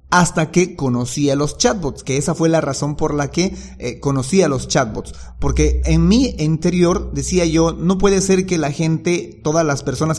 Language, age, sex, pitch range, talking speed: Spanish, 40-59, male, 135-165 Hz, 190 wpm